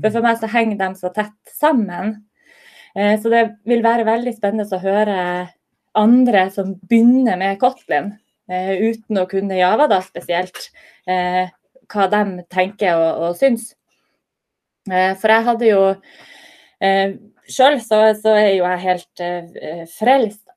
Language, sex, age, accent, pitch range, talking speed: English, female, 20-39, Swedish, 190-235 Hz, 145 wpm